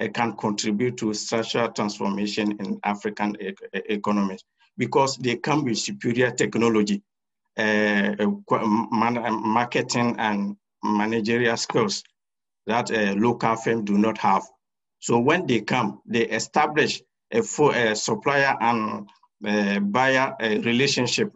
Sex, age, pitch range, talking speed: male, 50-69, 110-135 Hz, 115 wpm